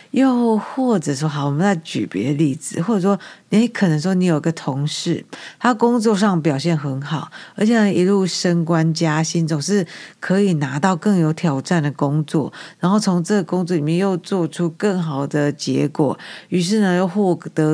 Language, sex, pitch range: Chinese, female, 155-190 Hz